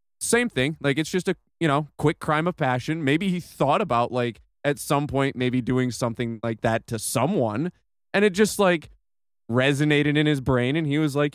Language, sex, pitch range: English, male, 120-160 Hz